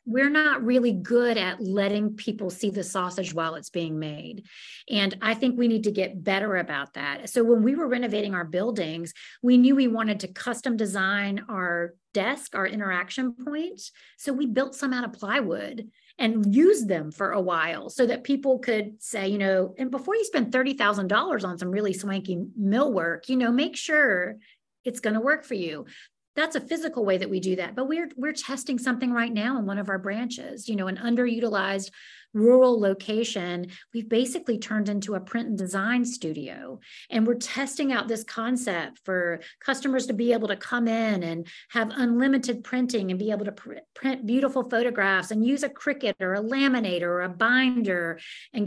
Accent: American